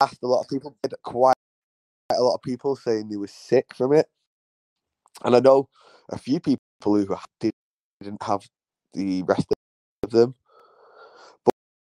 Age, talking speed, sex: 20-39, 150 wpm, male